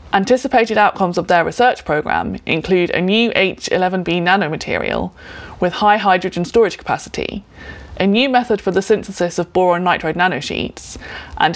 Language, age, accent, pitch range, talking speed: English, 20-39, British, 165-210 Hz, 140 wpm